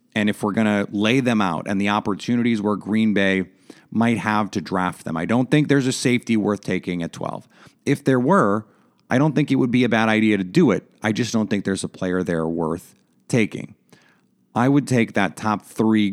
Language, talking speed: English, 225 wpm